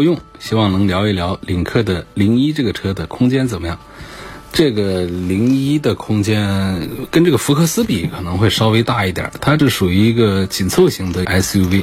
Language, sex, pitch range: Chinese, male, 90-115 Hz